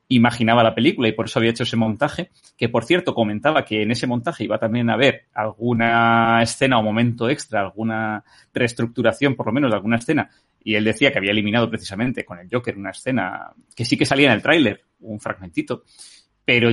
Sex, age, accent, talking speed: male, 30-49, Spanish, 205 wpm